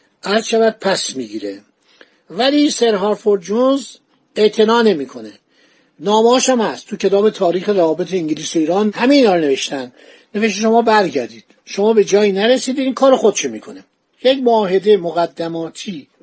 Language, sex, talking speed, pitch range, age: Persian, male, 135 wpm, 180-240 Hz, 60-79